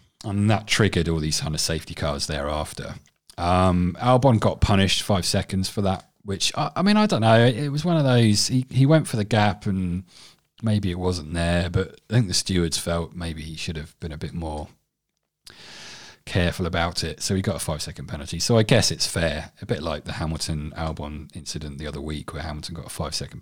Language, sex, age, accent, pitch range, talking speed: English, male, 30-49, British, 80-100 Hz, 225 wpm